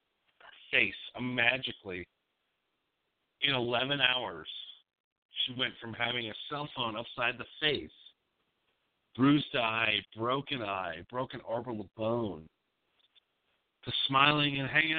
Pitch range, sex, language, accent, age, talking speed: 105-130 Hz, male, English, American, 50-69, 110 wpm